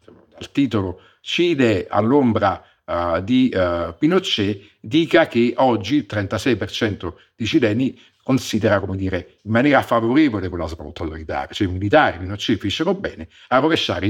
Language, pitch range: Italian, 95-115 Hz